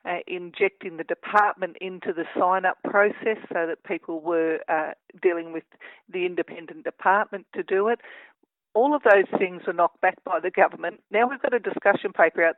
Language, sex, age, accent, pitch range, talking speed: English, female, 60-79, Australian, 170-230 Hz, 180 wpm